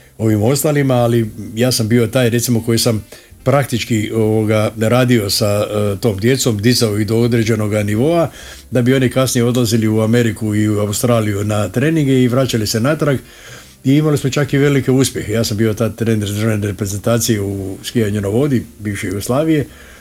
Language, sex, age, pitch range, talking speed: Croatian, male, 60-79, 105-120 Hz, 175 wpm